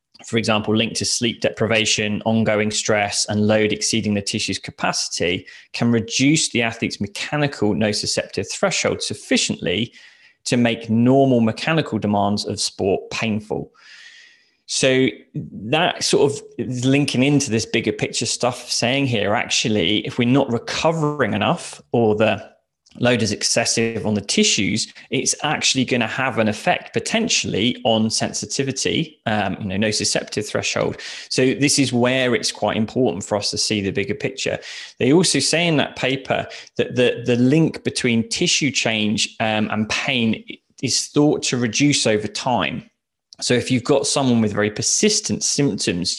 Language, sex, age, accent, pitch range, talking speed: English, male, 20-39, British, 105-135 Hz, 150 wpm